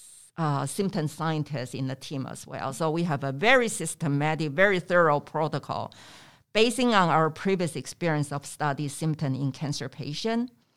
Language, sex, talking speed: English, female, 155 wpm